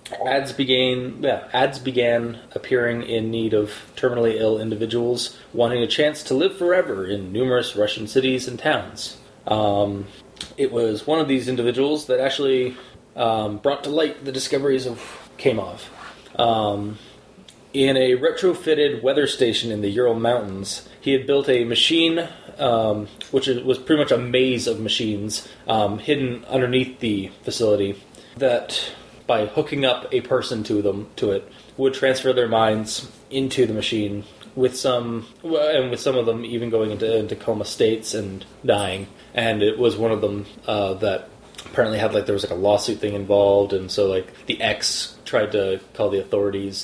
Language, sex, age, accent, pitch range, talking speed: English, male, 20-39, American, 105-130 Hz, 165 wpm